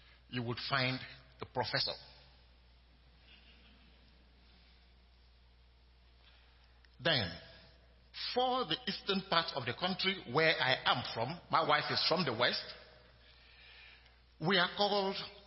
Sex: male